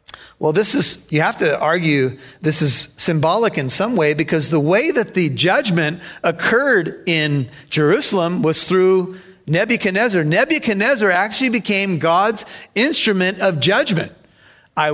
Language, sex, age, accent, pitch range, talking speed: English, male, 40-59, American, 170-240 Hz, 135 wpm